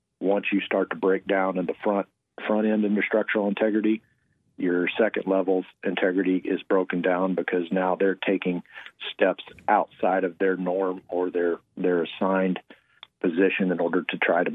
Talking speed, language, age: 170 wpm, English, 40-59